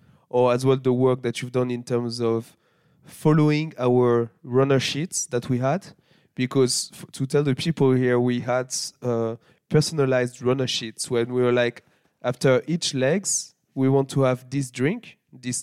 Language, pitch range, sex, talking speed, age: French, 115-130 Hz, male, 175 wpm, 20-39